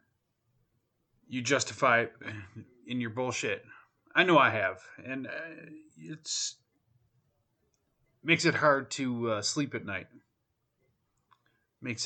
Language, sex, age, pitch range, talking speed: English, male, 30-49, 105-125 Hz, 105 wpm